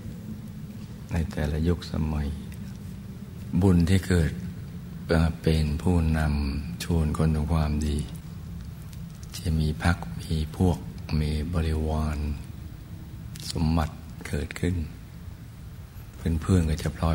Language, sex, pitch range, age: Thai, male, 75-85 Hz, 60-79